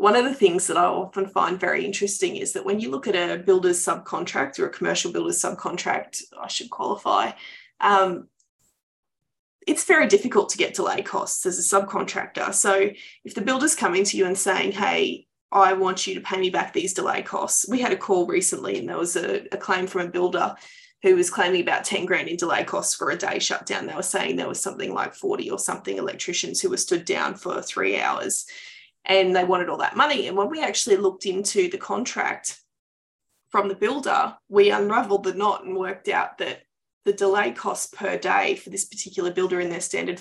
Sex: female